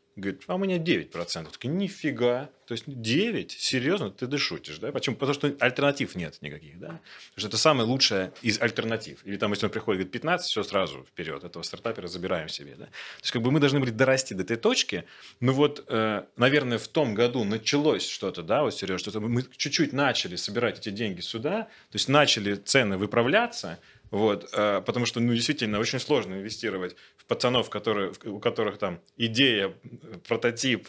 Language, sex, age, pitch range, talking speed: Russian, male, 30-49, 95-130 Hz, 185 wpm